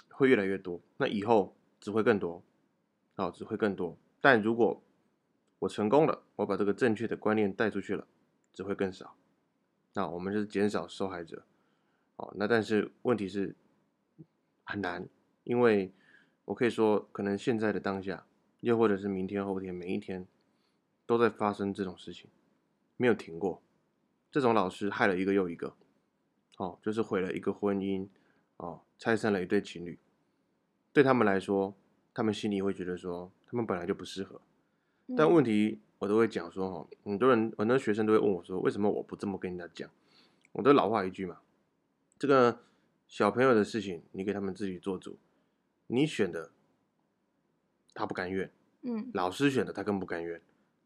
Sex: male